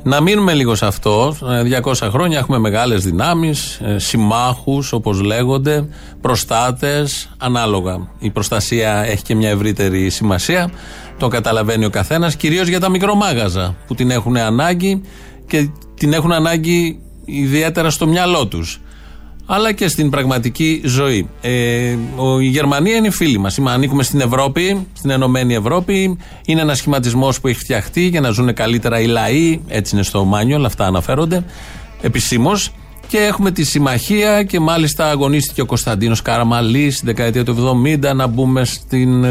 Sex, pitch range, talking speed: male, 115-160 Hz, 150 wpm